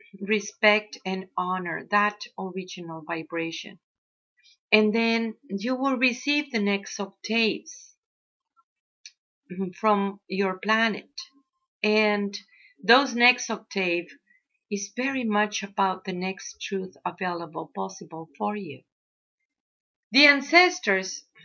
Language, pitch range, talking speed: English, 190-255 Hz, 95 wpm